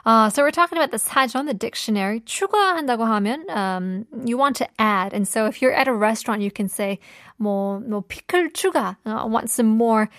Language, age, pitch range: Korean, 20-39, 205-275 Hz